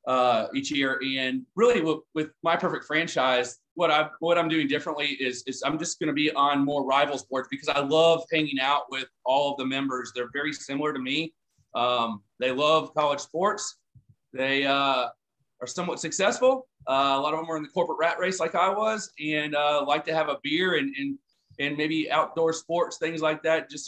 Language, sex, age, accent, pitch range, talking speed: English, male, 30-49, American, 130-160 Hz, 210 wpm